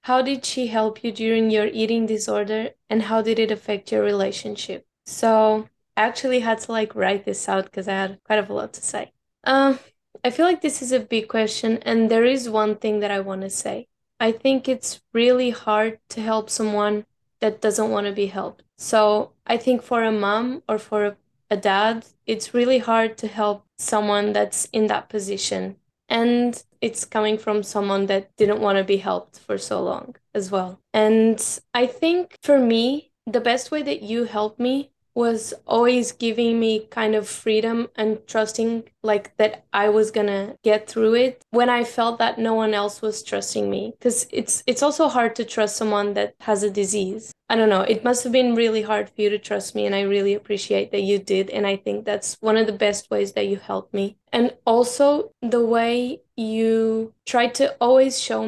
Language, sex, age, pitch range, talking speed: English, female, 10-29, 210-235 Hz, 205 wpm